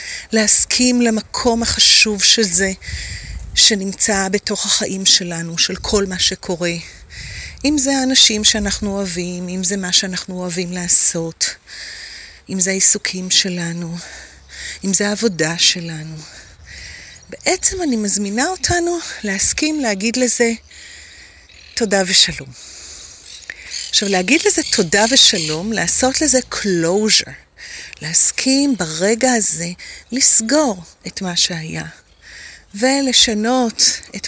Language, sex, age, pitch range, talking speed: Hebrew, female, 30-49, 185-250 Hz, 100 wpm